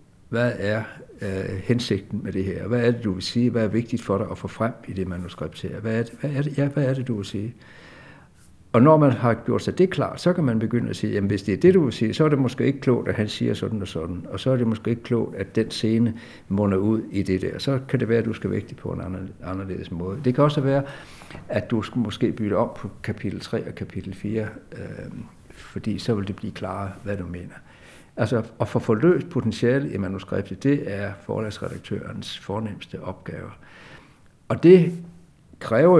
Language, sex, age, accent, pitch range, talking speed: Danish, male, 60-79, native, 100-125 Hz, 235 wpm